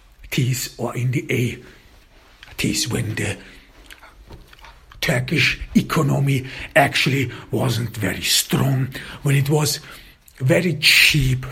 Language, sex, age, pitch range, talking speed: English, male, 60-79, 110-135 Hz, 90 wpm